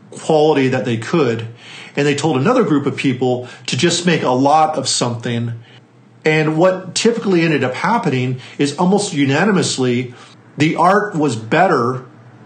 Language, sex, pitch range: English, male, 120-155 Hz